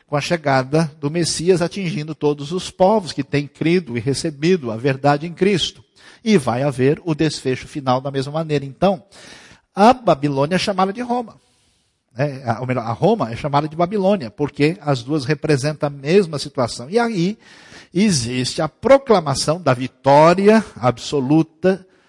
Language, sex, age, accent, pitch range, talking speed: Portuguese, male, 50-69, Brazilian, 130-175 Hz, 155 wpm